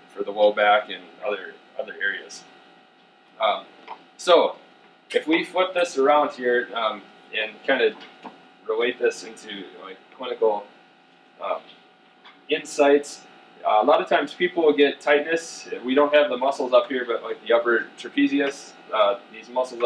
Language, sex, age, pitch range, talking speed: English, male, 20-39, 120-180 Hz, 160 wpm